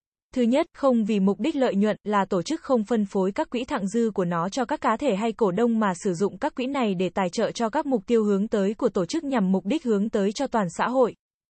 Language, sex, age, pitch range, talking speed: Vietnamese, female, 20-39, 200-250 Hz, 280 wpm